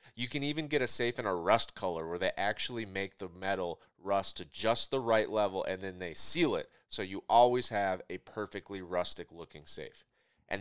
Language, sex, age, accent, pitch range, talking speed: English, male, 30-49, American, 95-125 Hz, 210 wpm